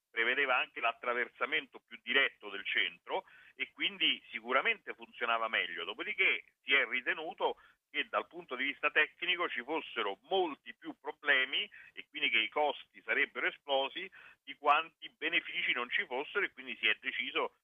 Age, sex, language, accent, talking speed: 50-69, male, Italian, native, 155 wpm